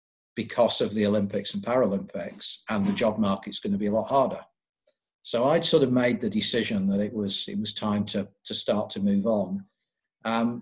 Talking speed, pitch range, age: 200 wpm, 105-120 Hz, 40-59